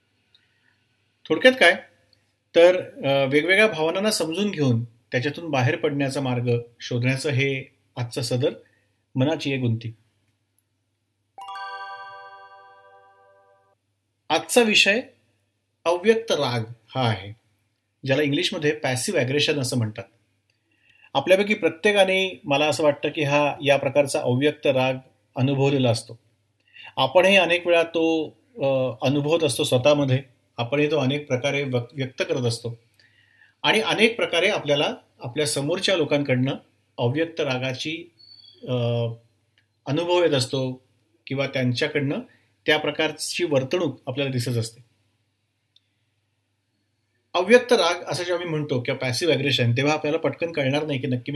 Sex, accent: male, native